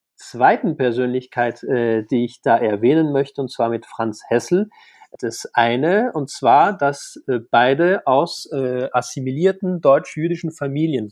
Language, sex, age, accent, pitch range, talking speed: German, male, 40-59, German, 120-180 Hz, 135 wpm